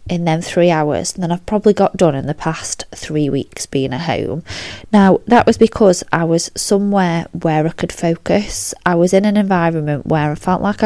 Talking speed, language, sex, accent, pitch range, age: 210 wpm, English, female, British, 150-190 Hz, 20-39